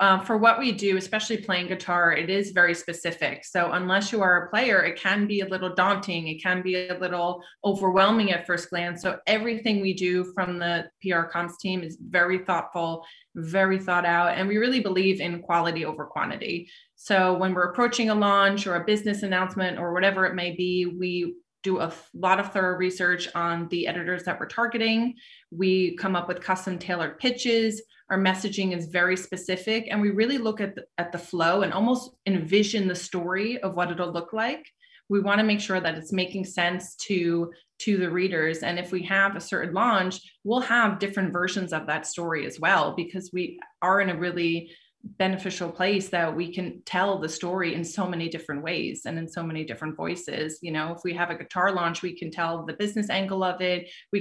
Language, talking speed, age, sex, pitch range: English, 205 wpm, 20-39, female, 170-195 Hz